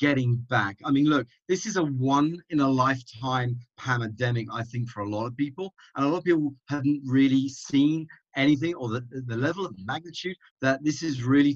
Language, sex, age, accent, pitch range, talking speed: English, male, 40-59, British, 125-170 Hz, 185 wpm